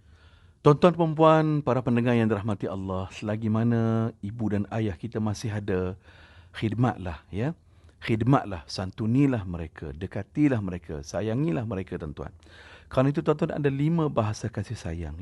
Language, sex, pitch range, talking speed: Malay, male, 90-125 Hz, 135 wpm